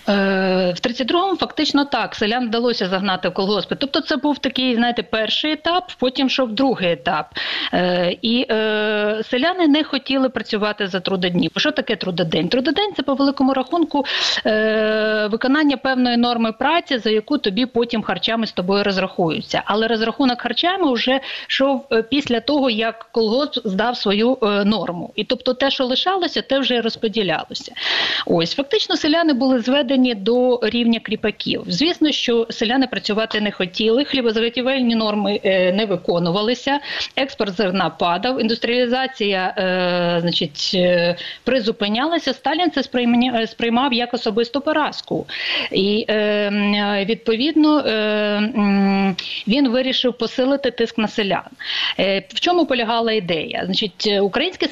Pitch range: 210-265 Hz